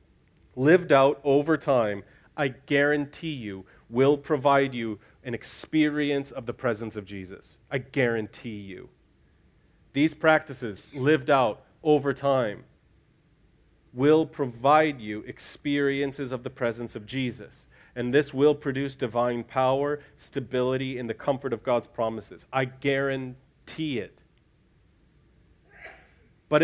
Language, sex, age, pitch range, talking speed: English, male, 40-59, 110-140 Hz, 115 wpm